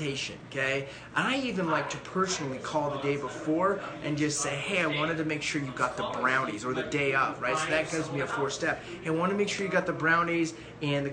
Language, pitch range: English, 140-175 Hz